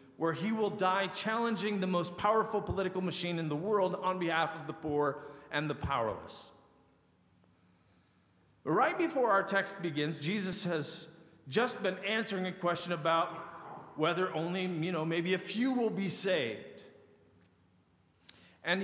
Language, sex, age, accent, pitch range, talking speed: English, male, 40-59, American, 155-205 Hz, 145 wpm